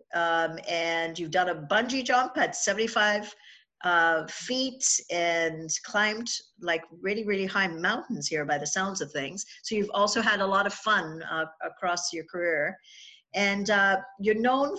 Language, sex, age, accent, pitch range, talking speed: English, female, 50-69, American, 175-220 Hz, 160 wpm